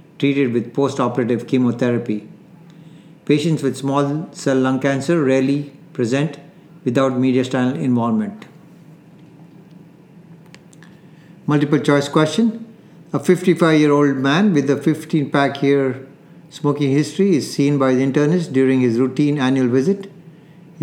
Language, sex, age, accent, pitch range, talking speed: English, male, 60-79, Indian, 135-170 Hz, 110 wpm